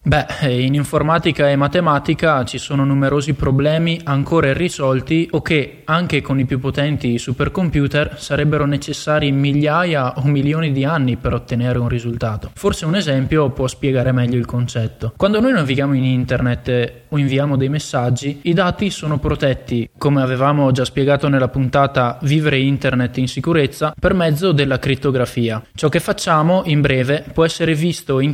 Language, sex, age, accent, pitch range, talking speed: Italian, male, 20-39, native, 130-155 Hz, 155 wpm